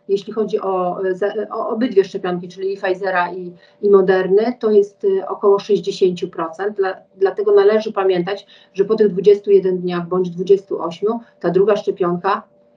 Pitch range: 175-205 Hz